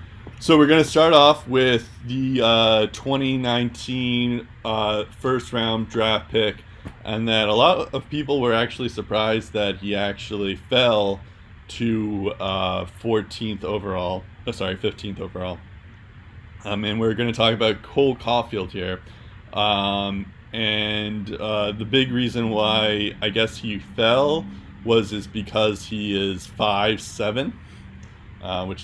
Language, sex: English, male